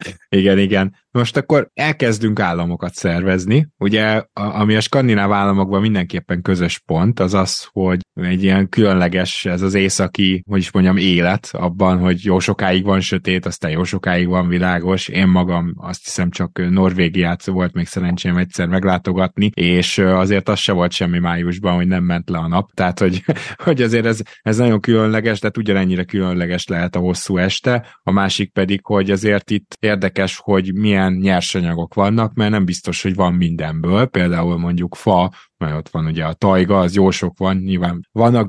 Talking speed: 170 wpm